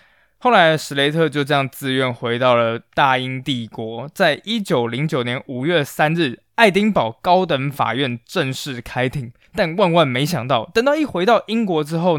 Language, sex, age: Chinese, male, 20-39